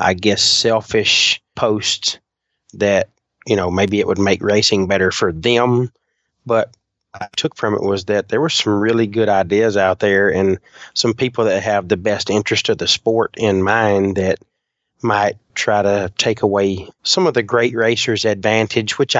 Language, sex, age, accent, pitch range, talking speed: English, male, 30-49, American, 95-110 Hz, 180 wpm